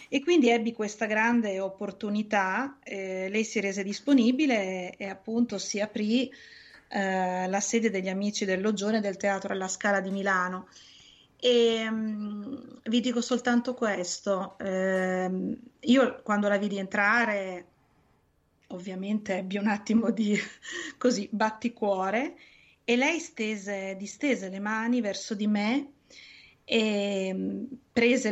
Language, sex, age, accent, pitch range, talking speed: Italian, female, 30-49, native, 190-240 Hz, 125 wpm